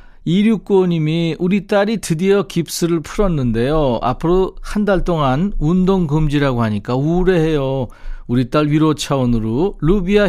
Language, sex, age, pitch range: Korean, male, 40-59, 120-175 Hz